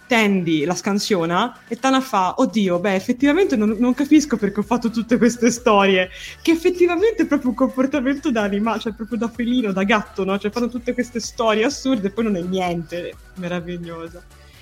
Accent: native